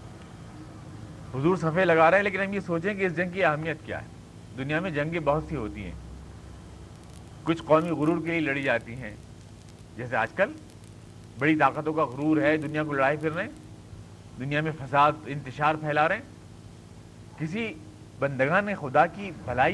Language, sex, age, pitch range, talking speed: Urdu, male, 40-59, 110-185 Hz, 175 wpm